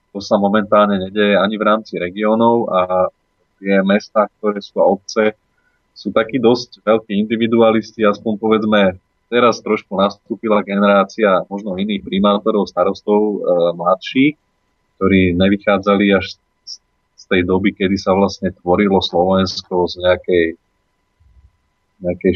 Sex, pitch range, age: male, 95-105 Hz, 30-49